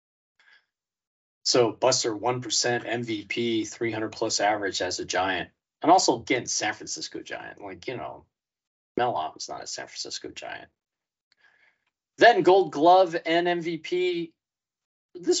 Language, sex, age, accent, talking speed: English, male, 40-59, American, 115 wpm